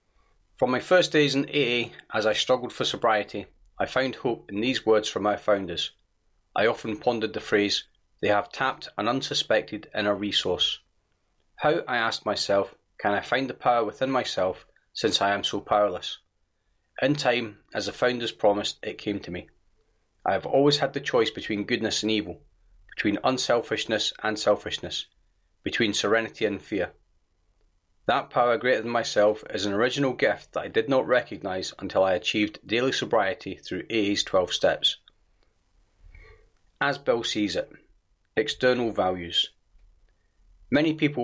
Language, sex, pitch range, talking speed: English, male, 100-125 Hz, 155 wpm